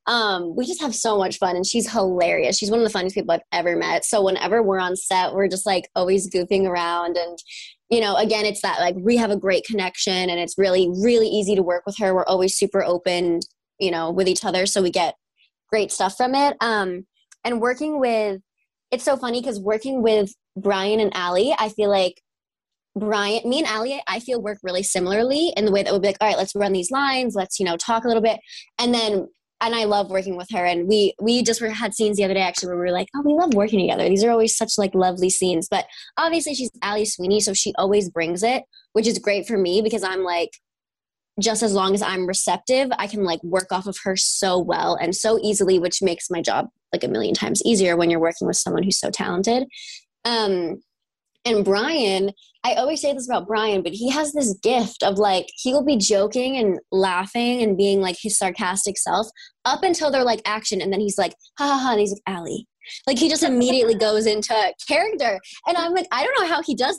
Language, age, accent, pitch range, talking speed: English, 20-39, American, 185-235 Hz, 235 wpm